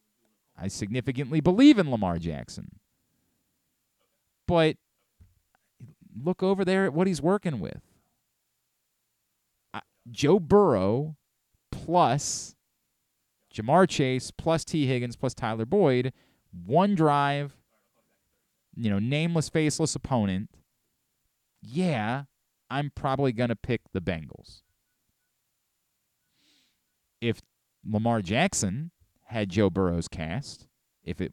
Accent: American